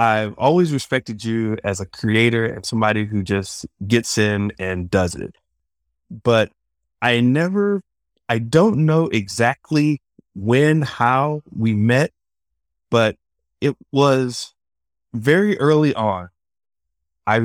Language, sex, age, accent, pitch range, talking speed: English, male, 30-49, American, 90-130 Hz, 115 wpm